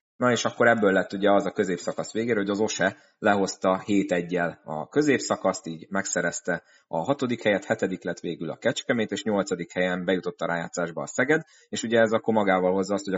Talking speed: 200 wpm